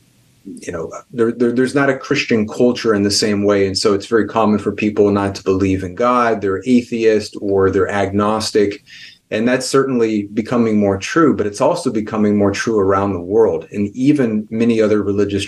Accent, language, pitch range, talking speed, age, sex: American, English, 100-125 Hz, 195 wpm, 30-49, male